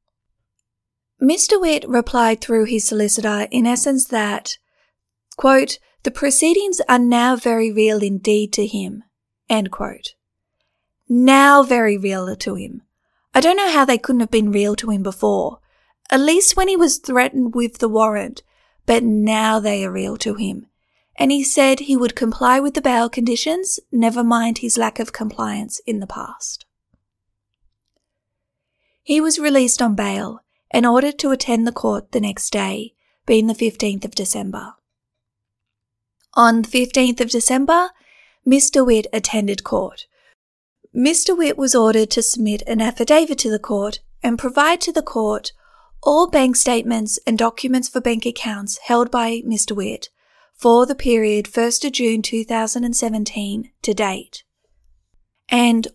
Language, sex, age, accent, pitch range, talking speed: English, female, 30-49, Australian, 215-265 Hz, 150 wpm